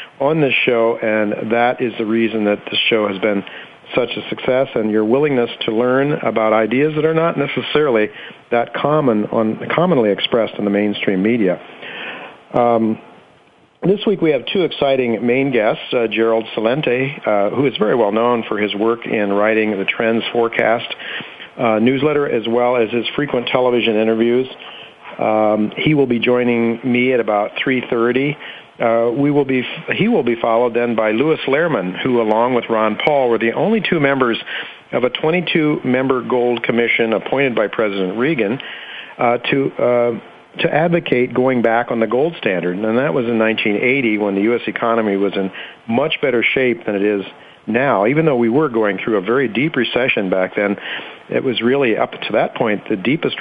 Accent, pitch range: American, 110-130 Hz